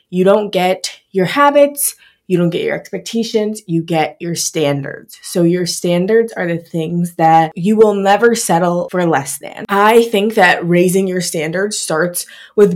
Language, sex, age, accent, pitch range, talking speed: English, female, 20-39, American, 165-200 Hz, 170 wpm